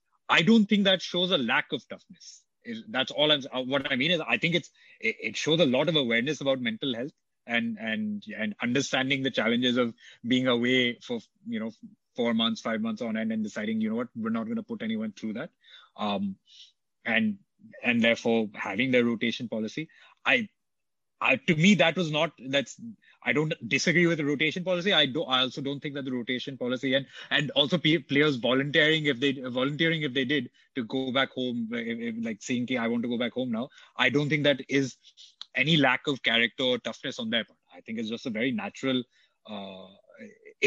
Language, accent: English, Indian